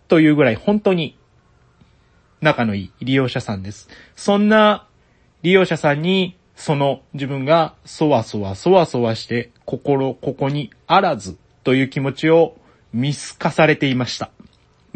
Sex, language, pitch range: male, Japanese, 120-175 Hz